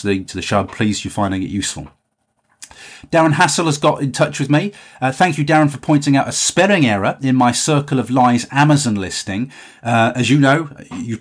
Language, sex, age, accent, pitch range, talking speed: English, male, 30-49, British, 105-135 Hz, 210 wpm